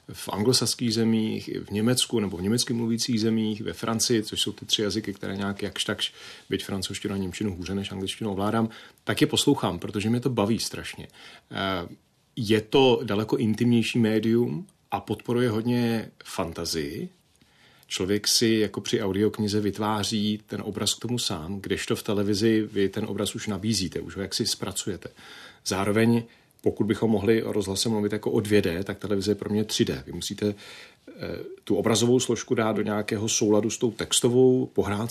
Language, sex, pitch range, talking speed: Czech, male, 100-115 Hz, 160 wpm